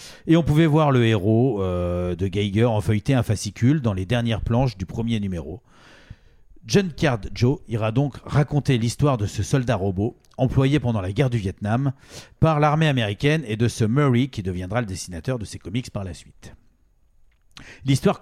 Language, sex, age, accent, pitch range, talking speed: French, male, 40-59, French, 105-140 Hz, 180 wpm